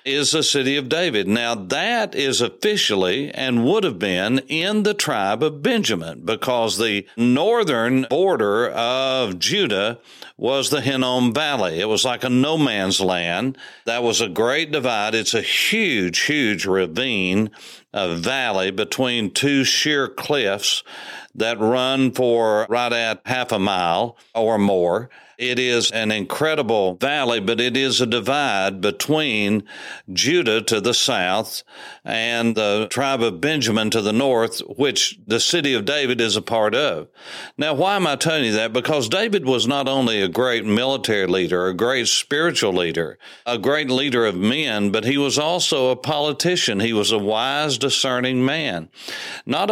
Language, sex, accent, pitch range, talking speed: English, male, American, 110-135 Hz, 160 wpm